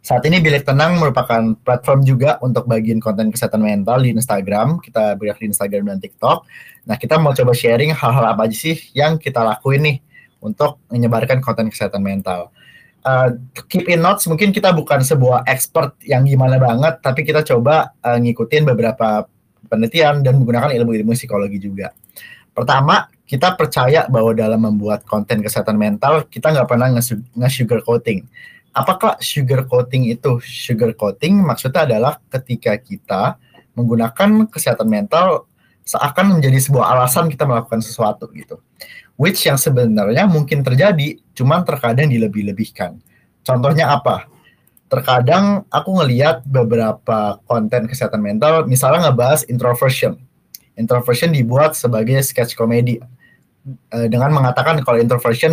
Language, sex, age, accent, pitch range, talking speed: Indonesian, male, 20-39, native, 115-150 Hz, 135 wpm